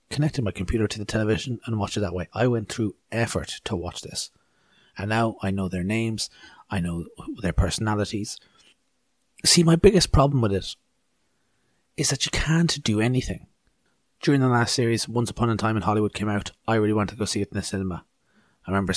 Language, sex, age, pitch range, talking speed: English, male, 30-49, 100-125 Hz, 205 wpm